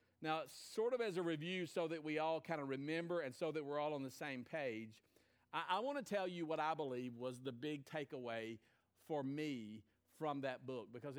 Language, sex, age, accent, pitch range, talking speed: English, male, 50-69, American, 135-185 Hz, 215 wpm